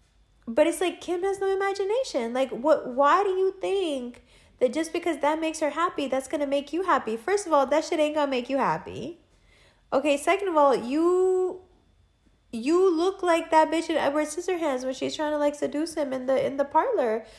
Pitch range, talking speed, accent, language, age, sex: 235-330 Hz, 205 wpm, American, English, 20-39, female